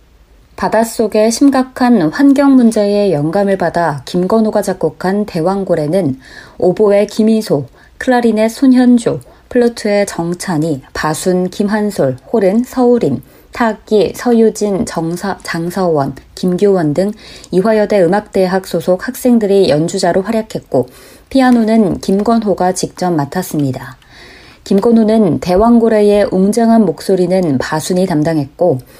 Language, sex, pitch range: Korean, female, 165-220 Hz